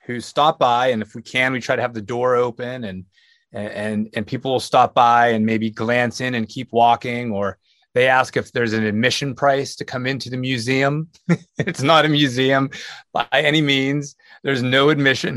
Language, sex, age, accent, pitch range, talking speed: English, male, 30-49, American, 125-150 Hz, 200 wpm